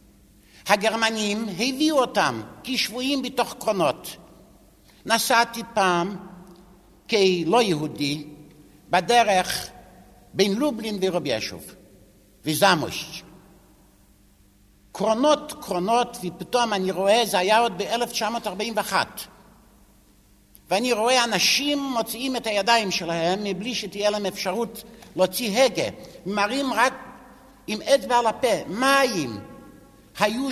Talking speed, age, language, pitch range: 90 wpm, 60-79, Hebrew, 150-235 Hz